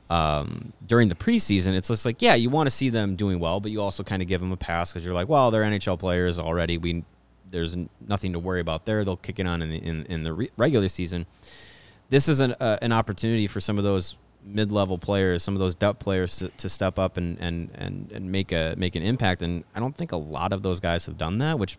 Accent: American